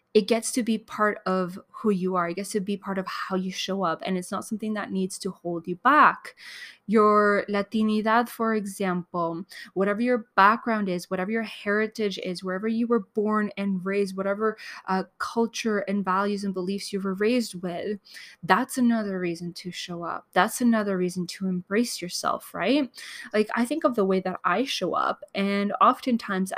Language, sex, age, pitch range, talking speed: English, female, 20-39, 185-225 Hz, 185 wpm